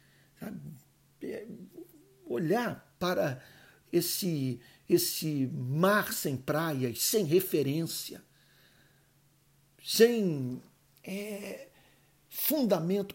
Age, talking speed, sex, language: 60-79, 50 wpm, male, Portuguese